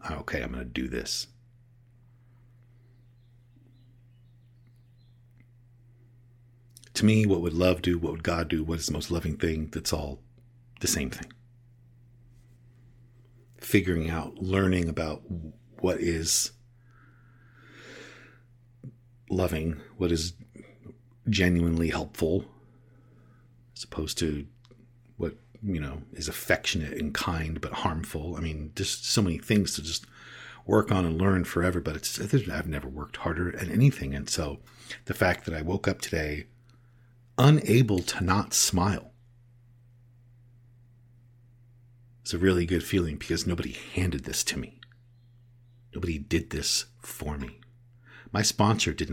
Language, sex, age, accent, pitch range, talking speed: English, male, 50-69, American, 85-120 Hz, 125 wpm